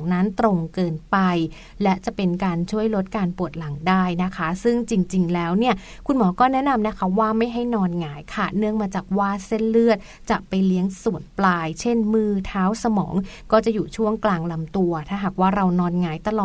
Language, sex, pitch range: Thai, female, 180-220 Hz